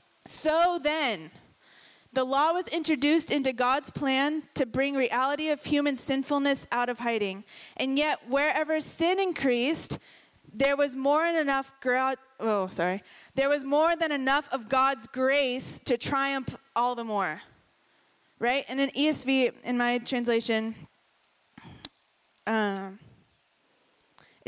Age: 20-39